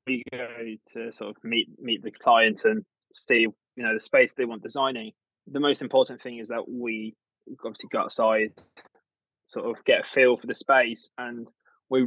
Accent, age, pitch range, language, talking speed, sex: British, 20-39, 110-135 Hz, English, 190 wpm, male